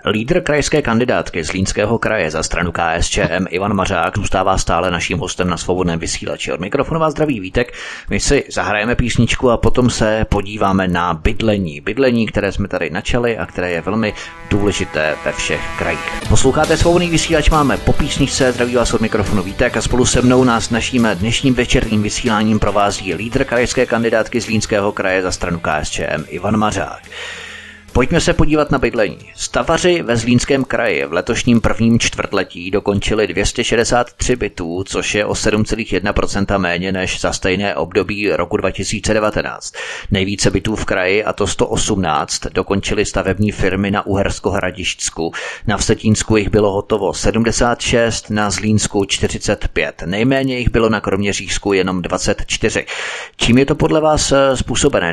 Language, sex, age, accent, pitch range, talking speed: Czech, male, 30-49, native, 100-120 Hz, 150 wpm